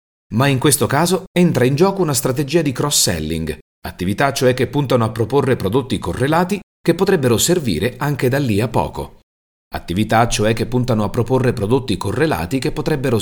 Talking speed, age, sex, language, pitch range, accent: 170 wpm, 40-59, male, Italian, 95-145 Hz, native